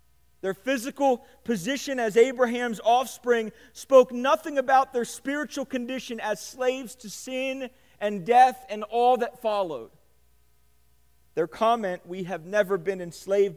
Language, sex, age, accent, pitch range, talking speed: English, male, 40-59, American, 155-260 Hz, 130 wpm